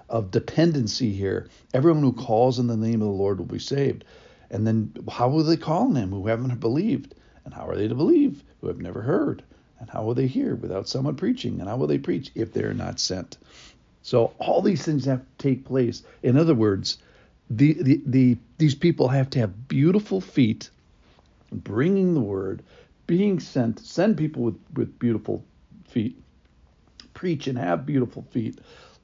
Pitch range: 110-140 Hz